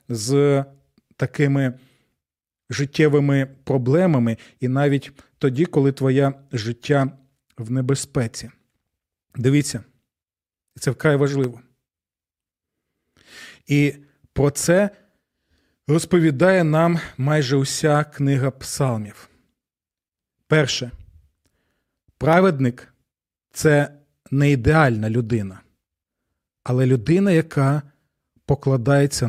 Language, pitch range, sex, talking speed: Ukrainian, 110-150 Hz, male, 75 wpm